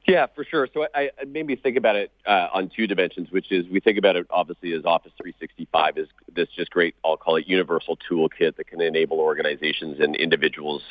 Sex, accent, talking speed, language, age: male, American, 215 wpm, English, 40-59